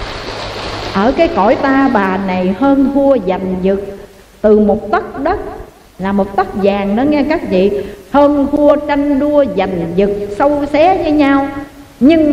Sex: female